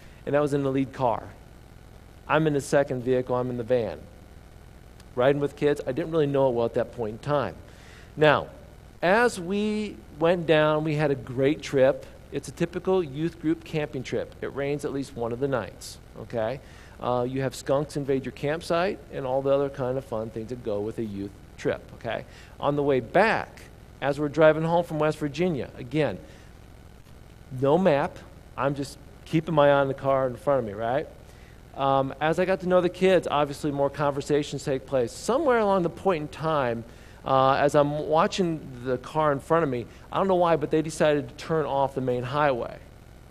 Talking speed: 205 wpm